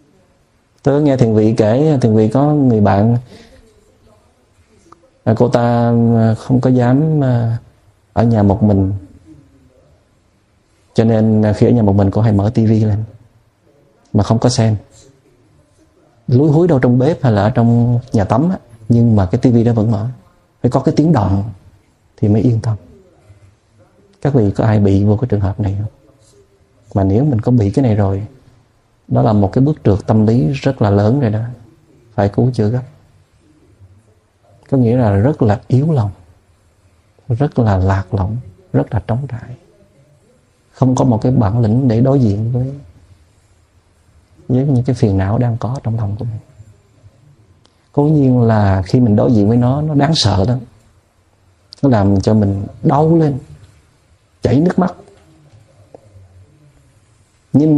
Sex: male